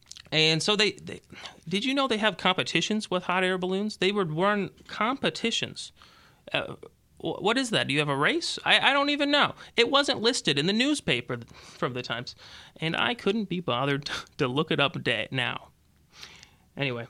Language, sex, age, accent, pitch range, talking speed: English, male, 30-49, American, 130-200 Hz, 185 wpm